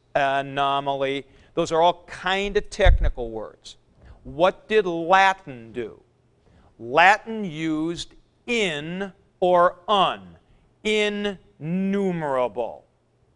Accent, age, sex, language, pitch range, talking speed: American, 50-69, male, English, 150-200 Hz, 80 wpm